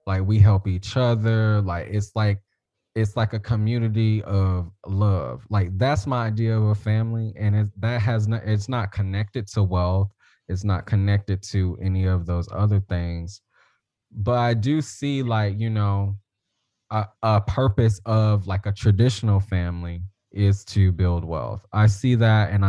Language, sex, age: English, male, 20-39